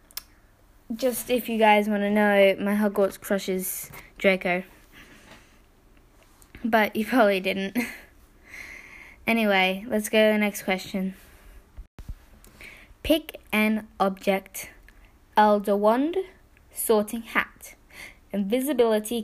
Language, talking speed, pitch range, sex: English, 95 wpm, 200-255 Hz, female